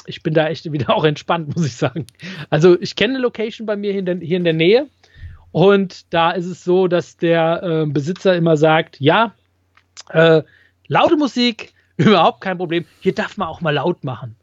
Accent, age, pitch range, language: German, 30-49, 155-200 Hz, German